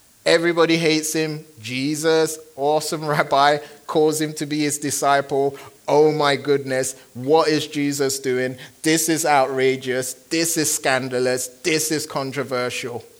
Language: English